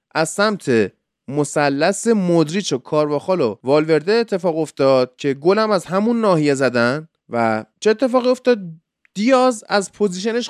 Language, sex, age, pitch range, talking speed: Persian, male, 20-39, 135-205 Hz, 135 wpm